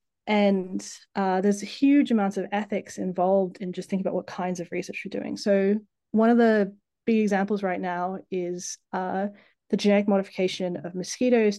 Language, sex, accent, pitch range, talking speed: English, female, Australian, 180-210 Hz, 170 wpm